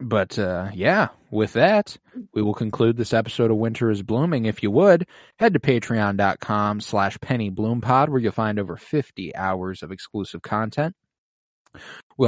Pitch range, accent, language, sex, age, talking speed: 95-115 Hz, American, English, male, 20-39, 160 wpm